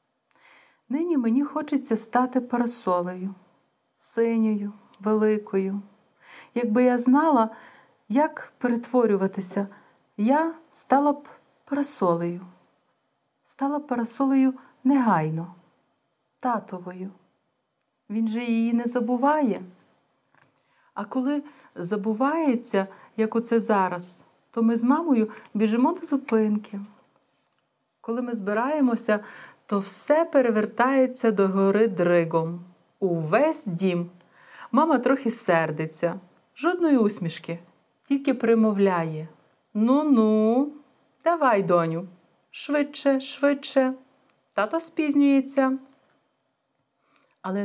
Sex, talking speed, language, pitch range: female, 80 wpm, Bulgarian, 190-270 Hz